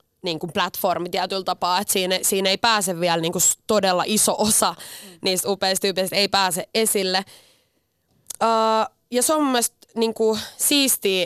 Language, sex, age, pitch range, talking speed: Finnish, female, 20-39, 185-225 Hz, 145 wpm